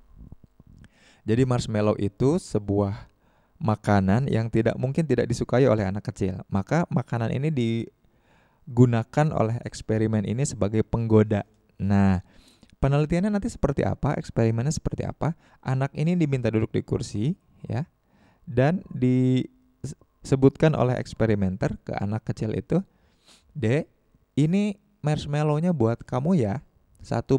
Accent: native